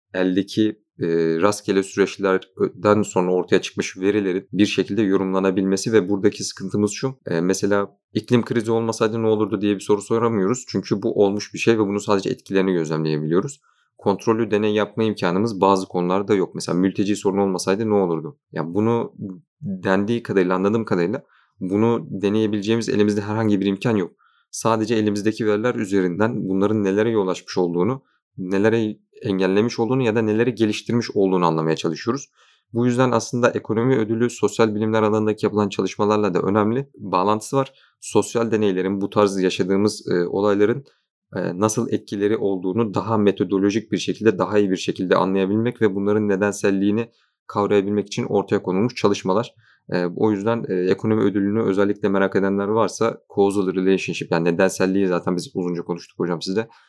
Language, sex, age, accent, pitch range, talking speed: Turkish, male, 40-59, native, 95-110 Hz, 150 wpm